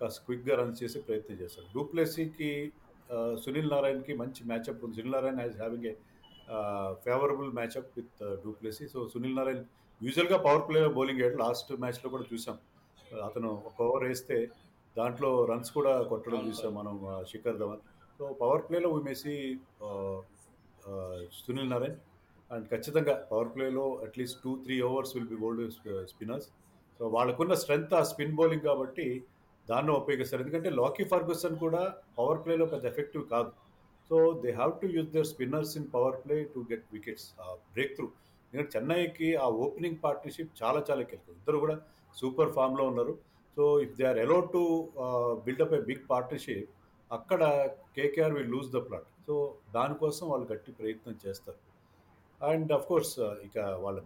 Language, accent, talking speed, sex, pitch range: Telugu, native, 150 wpm, male, 115-155 Hz